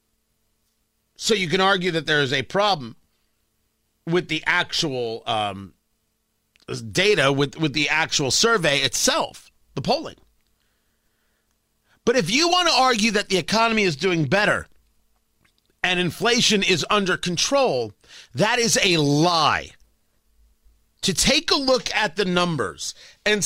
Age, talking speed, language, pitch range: 40-59, 130 wpm, English, 180-250 Hz